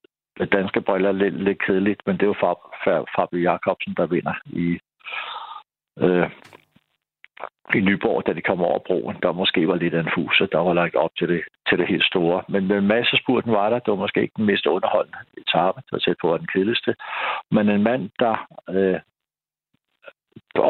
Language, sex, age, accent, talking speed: Danish, male, 60-79, native, 185 wpm